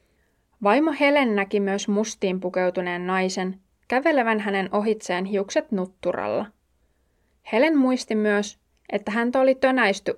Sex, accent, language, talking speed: female, native, Finnish, 110 wpm